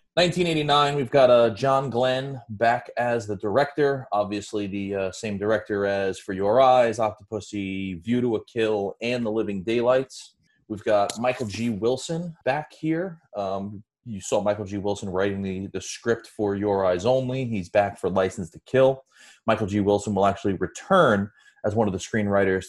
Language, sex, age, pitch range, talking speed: English, male, 30-49, 95-115 Hz, 175 wpm